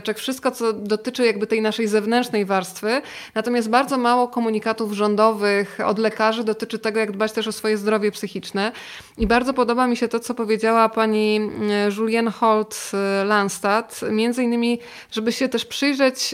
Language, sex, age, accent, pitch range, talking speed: Polish, female, 20-39, native, 210-235 Hz, 150 wpm